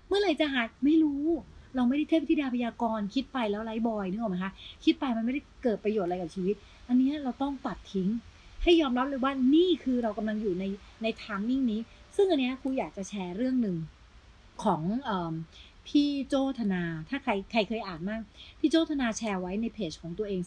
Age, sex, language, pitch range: 30-49, female, Thai, 195-255 Hz